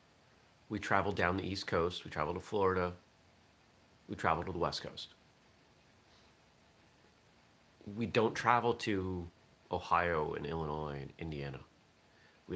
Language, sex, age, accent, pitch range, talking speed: English, male, 30-49, American, 80-105 Hz, 125 wpm